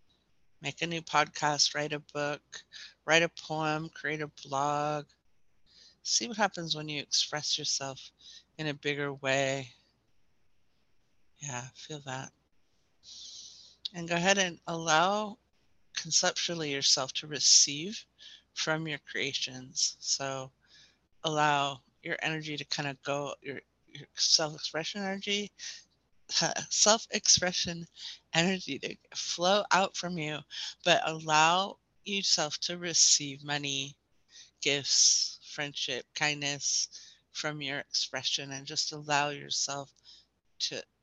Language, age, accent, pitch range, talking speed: English, 60-79, American, 140-165 Hz, 110 wpm